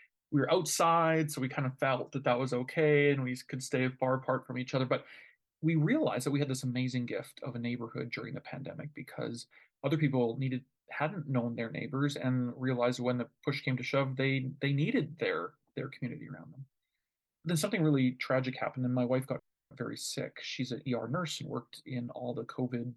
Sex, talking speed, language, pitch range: male, 210 wpm, English, 120-145 Hz